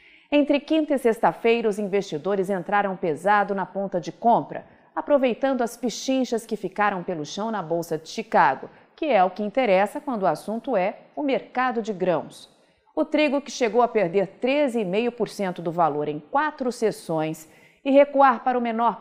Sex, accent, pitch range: female, Brazilian, 195-255 Hz